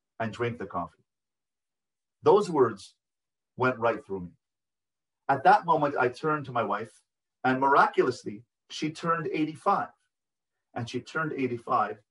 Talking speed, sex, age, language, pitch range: 135 wpm, male, 40-59, English, 115-185 Hz